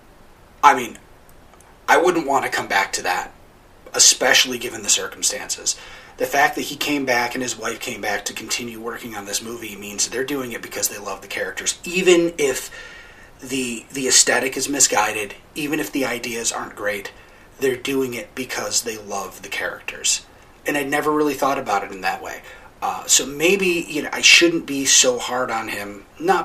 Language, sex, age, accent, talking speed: English, male, 30-49, American, 195 wpm